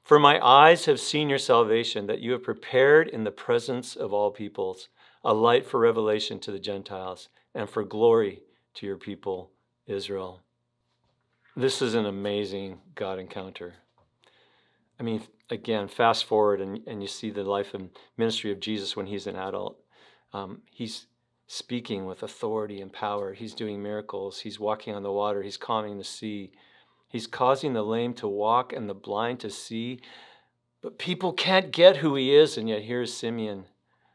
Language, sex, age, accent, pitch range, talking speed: English, male, 50-69, American, 100-130 Hz, 170 wpm